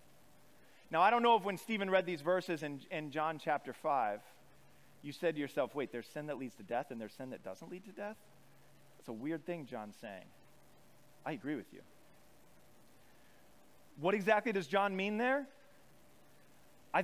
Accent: American